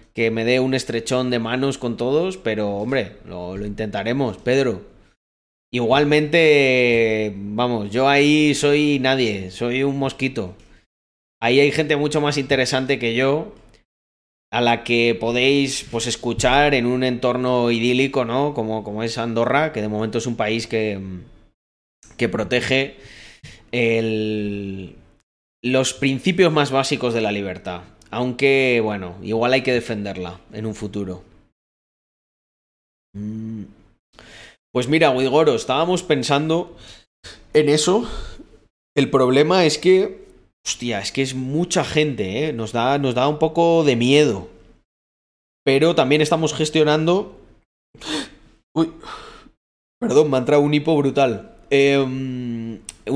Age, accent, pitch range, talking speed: 30-49, Spanish, 110-145 Hz, 125 wpm